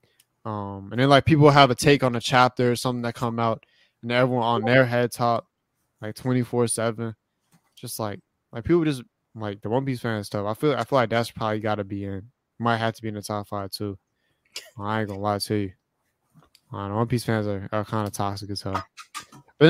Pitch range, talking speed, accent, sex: 110-145 Hz, 225 wpm, American, male